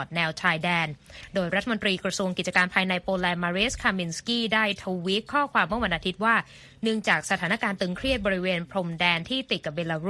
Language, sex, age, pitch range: Thai, female, 20-39, 175-220 Hz